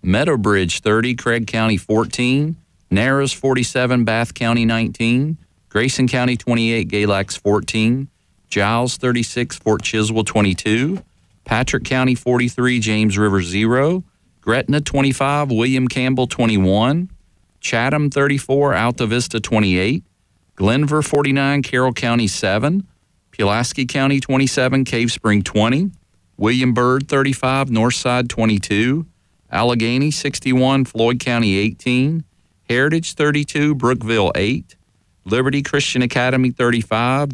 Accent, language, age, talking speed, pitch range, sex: American, English, 40-59, 105 wpm, 110-135 Hz, male